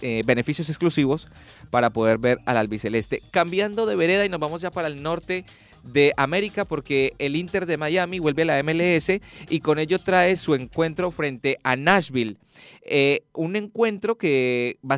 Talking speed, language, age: 170 wpm, Spanish, 30-49